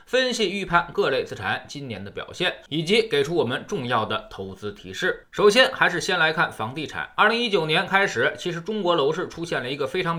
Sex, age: male, 20-39